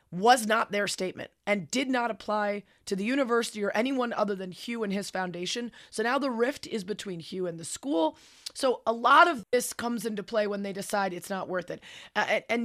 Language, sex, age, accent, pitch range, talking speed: English, female, 30-49, American, 185-235 Hz, 220 wpm